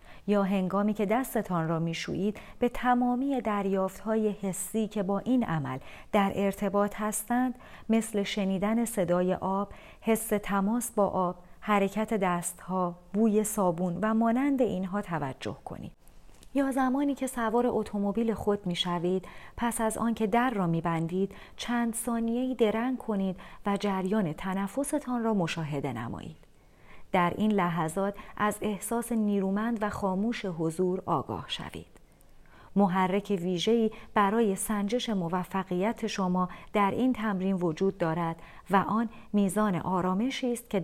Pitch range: 185-225 Hz